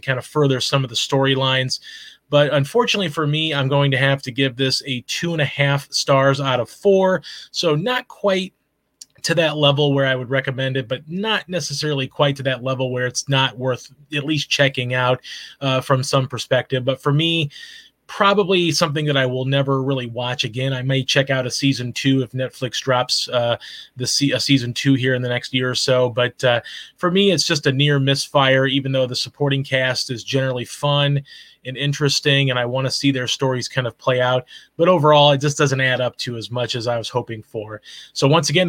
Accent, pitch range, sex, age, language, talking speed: American, 130-150 Hz, male, 30-49, English, 215 wpm